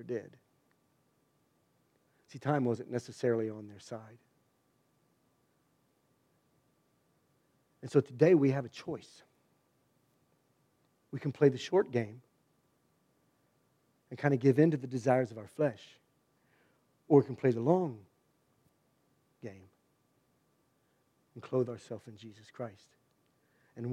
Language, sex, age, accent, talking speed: English, male, 50-69, American, 115 wpm